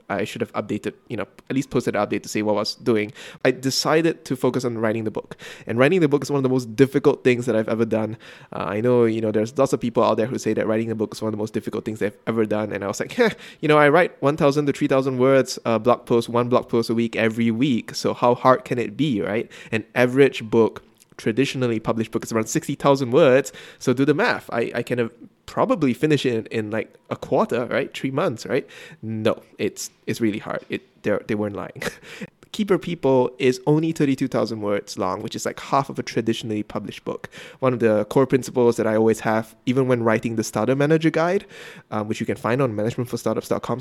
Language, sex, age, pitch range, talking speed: English, male, 20-39, 110-135 Hz, 240 wpm